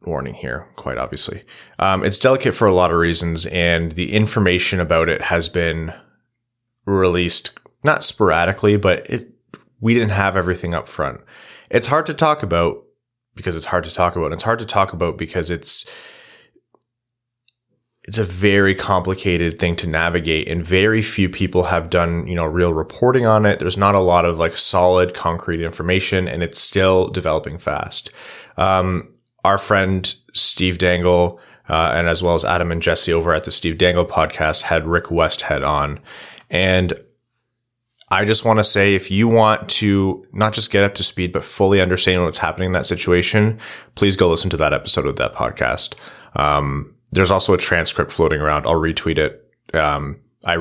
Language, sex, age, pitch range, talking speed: English, male, 20-39, 85-105 Hz, 180 wpm